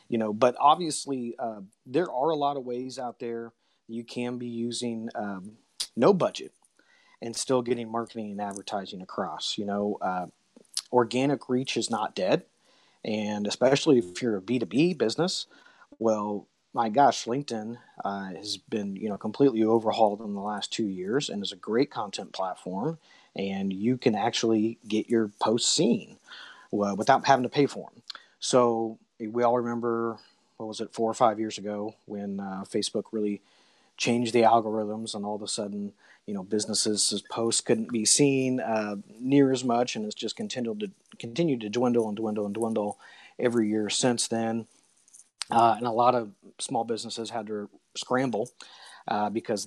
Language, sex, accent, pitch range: English, male, American, 105-120 Hz